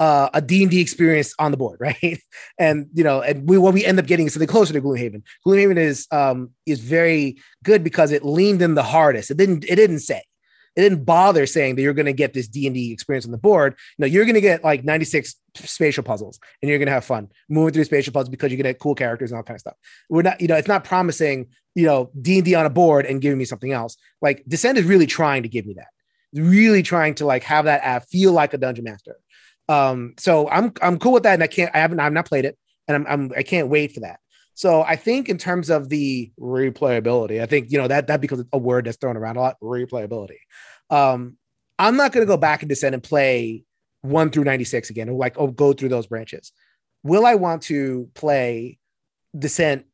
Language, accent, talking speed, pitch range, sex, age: English, American, 240 wpm, 130-165 Hz, male, 30-49